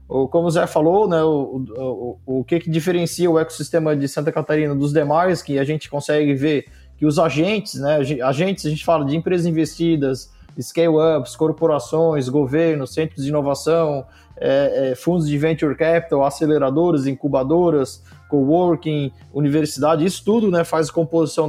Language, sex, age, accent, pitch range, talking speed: Portuguese, male, 20-39, Brazilian, 145-170 Hz, 160 wpm